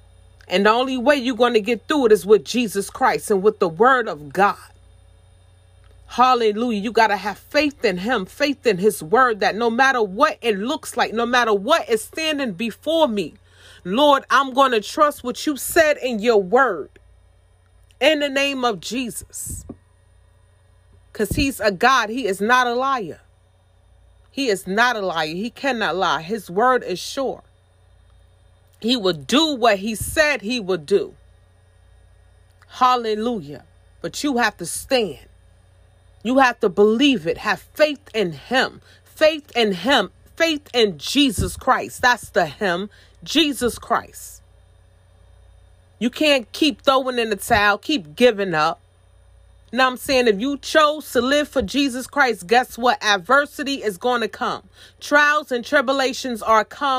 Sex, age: female, 30-49